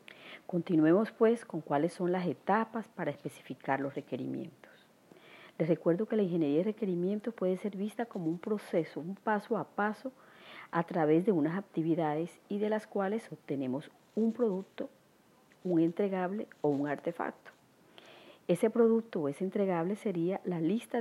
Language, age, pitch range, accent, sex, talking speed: Spanish, 40-59, 155-220 Hz, American, female, 150 wpm